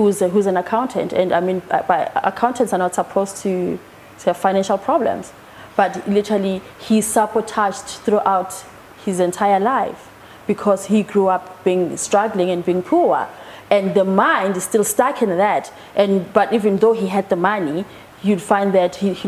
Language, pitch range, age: English, 190-220 Hz, 20-39